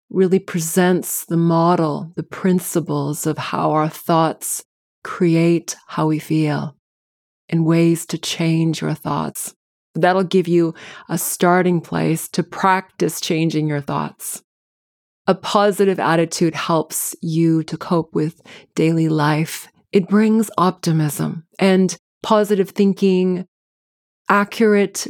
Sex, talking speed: female, 115 wpm